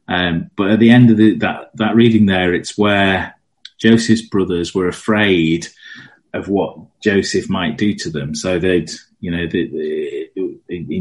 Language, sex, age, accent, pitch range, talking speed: English, male, 30-49, British, 80-105 Hz, 170 wpm